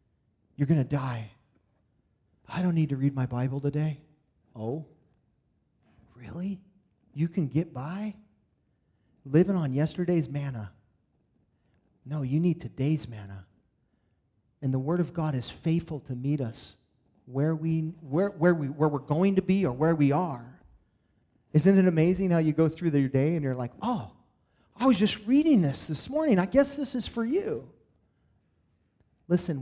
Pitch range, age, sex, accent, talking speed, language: 125-175 Hz, 30-49, male, American, 160 wpm, English